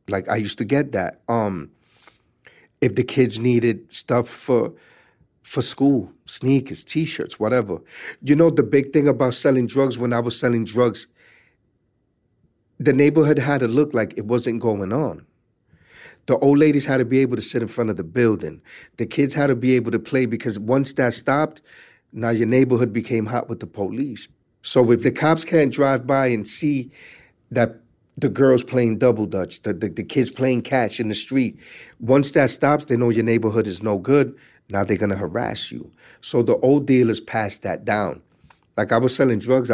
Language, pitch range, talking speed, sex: English, 105-135 Hz, 190 wpm, male